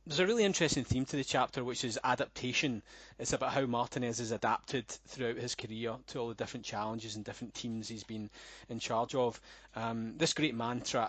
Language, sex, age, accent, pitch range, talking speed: English, male, 20-39, British, 115-140 Hz, 200 wpm